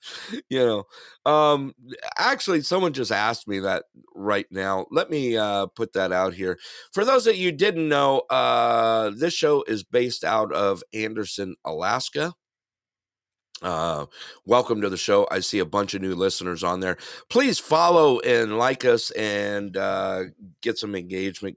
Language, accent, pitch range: English, American, 95-120 Hz